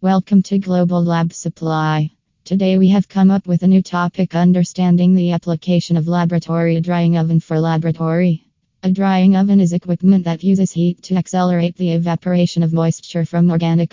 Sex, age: female, 20-39